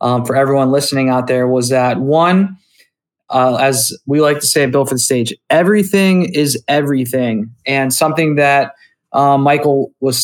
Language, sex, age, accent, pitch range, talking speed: English, male, 20-39, American, 130-145 Hz, 170 wpm